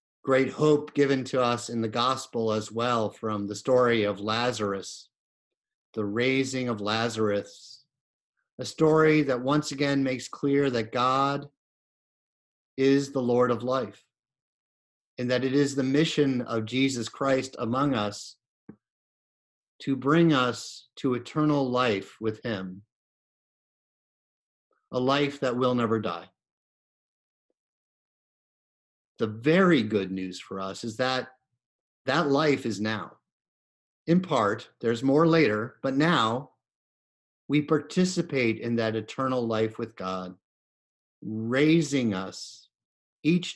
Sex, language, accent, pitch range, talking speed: male, English, American, 110-140 Hz, 120 wpm